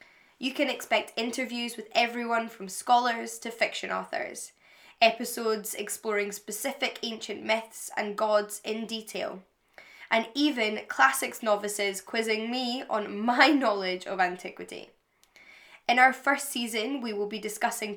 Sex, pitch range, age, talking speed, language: female, 205-250 Hz, 10-29, 130 wpm, English